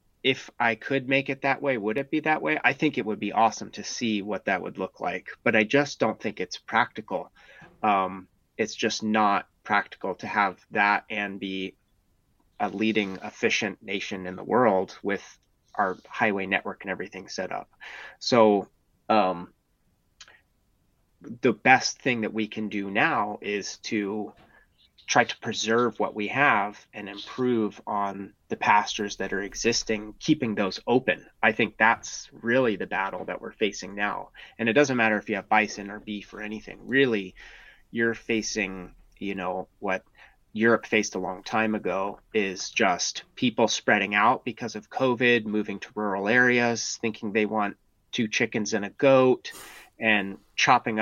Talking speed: 165 wpm